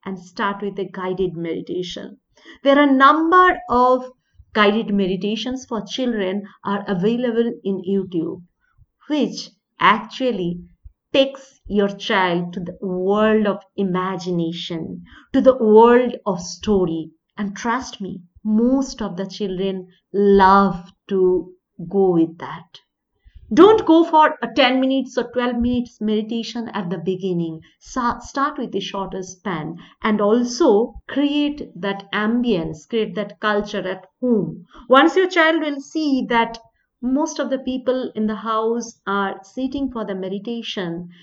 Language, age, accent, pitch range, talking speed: English, 50-69, Indian, 185-245 Hz, 135 wpm